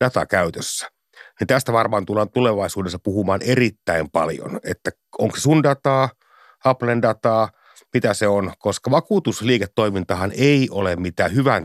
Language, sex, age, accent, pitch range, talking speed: Finnish, male, 60-79, native, 100-145 Hz, 120 wpm